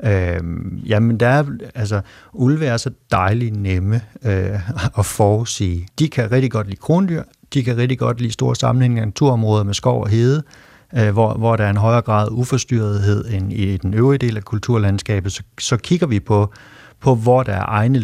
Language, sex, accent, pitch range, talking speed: Danish, male, native, 100-125 Hz, 190 wpm